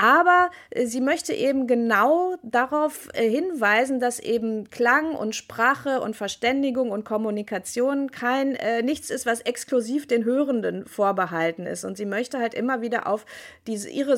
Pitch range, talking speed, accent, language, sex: 210-260 Hz, 145 wpm, German, German, female